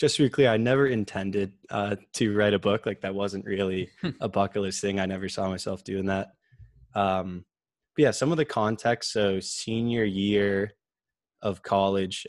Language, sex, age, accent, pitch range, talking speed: English, male, 20-39, American, 95-110 Hz, 185 wpm